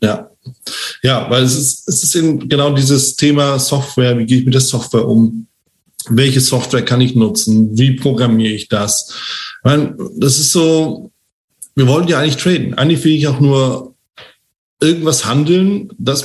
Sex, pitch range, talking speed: male, 115-140 Hz, 170 wpm